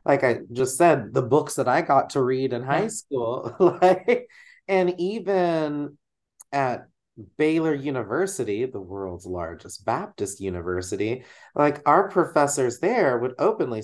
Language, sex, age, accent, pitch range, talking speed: English, male, 30-49, American, 125-185 Hz, 135 wpm